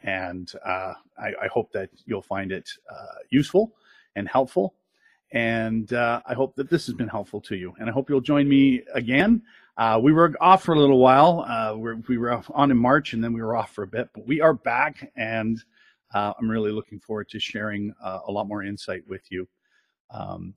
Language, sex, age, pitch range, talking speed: English, male, 40-59, 105-145 Hz, 215 wpm